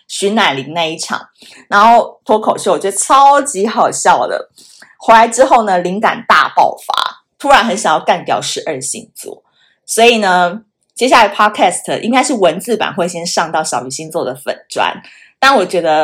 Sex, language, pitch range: female, Chinese, 175-265 Hz